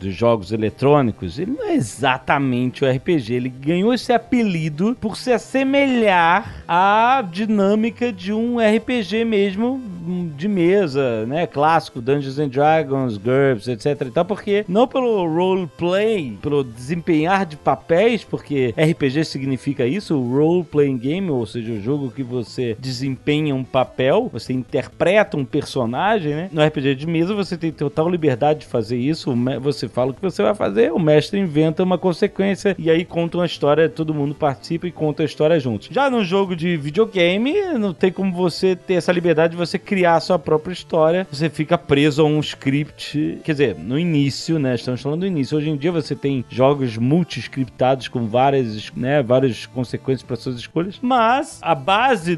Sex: male